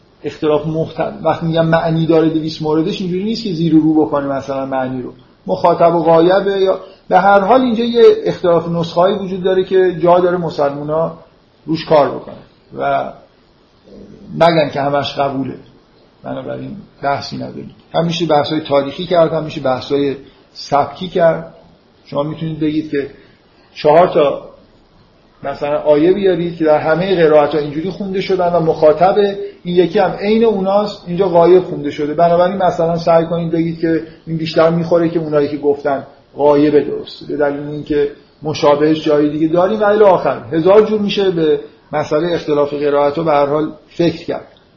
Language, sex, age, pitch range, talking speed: Persian, male, 50-69, 145-175 Hz, 160 wpm